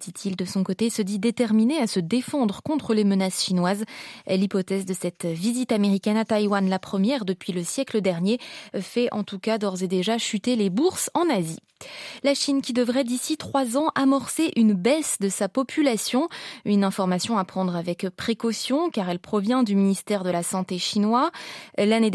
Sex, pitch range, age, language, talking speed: female, 195-250 Hz, 20-39, French, 185 wpm